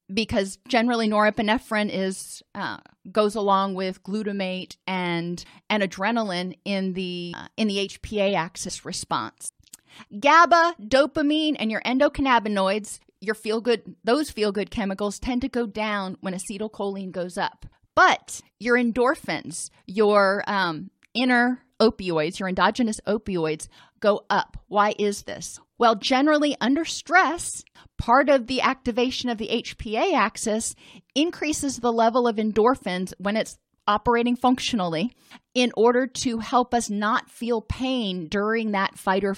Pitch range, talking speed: 195-240 Hz, 130 wpm